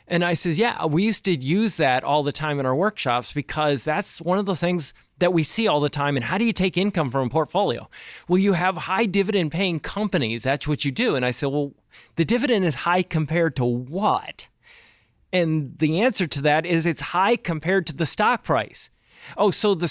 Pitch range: 150-205 Hz